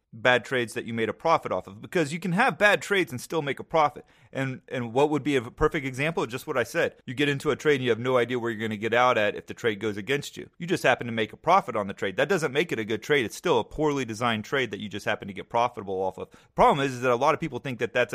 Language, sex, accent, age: English, male, American, 30-49